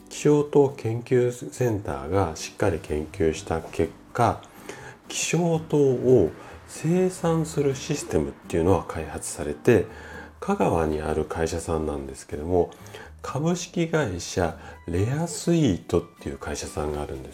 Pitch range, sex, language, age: 85-140 Hz, male, Japanese, 40-59